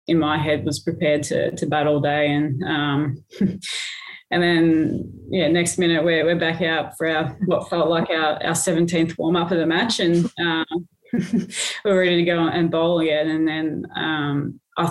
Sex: female